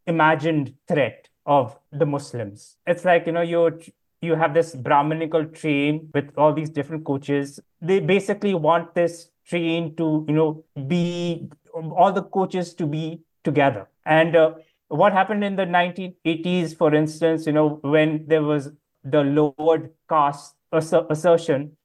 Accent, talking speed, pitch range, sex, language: Indian, 145 wpm, 145-170 Hz, male, English